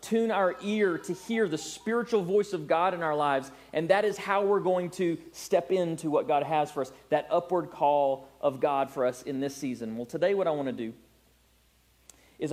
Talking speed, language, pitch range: 215 wpm, English, 145-200 Hz